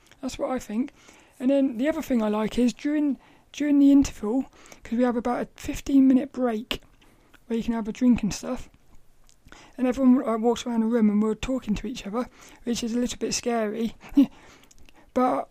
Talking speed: 195 wpm